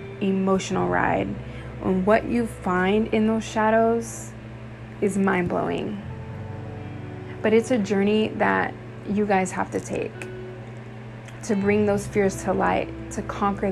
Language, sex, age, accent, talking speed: English, female, 20-39, American, 125 wpm